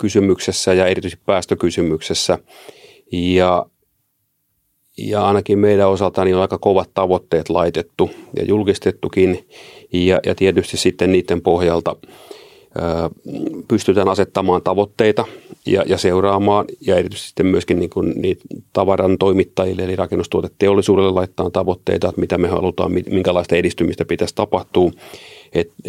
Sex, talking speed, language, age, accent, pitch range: male, 120 wpm, Finnish, 30-49, native, 90-95 Hz